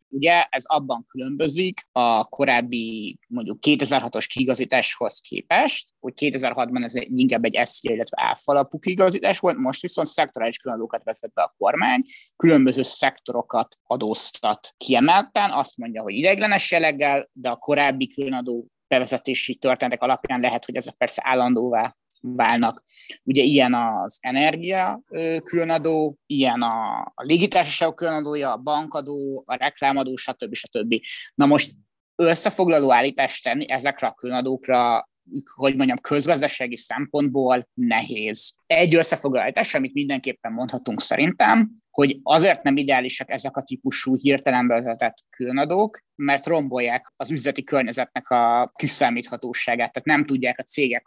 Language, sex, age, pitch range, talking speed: Hungarian, male, 20-39, 125-165 Hz, 120 wpm